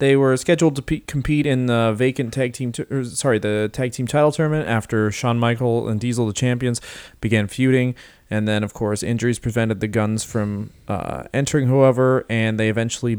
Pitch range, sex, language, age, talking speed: 110-135 Hz, male, English, 30-49, 195 wpm